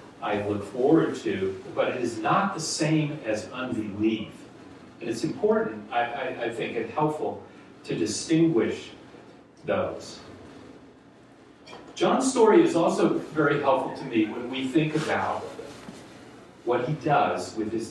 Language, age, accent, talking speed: English, 40-59, American, 135 wpm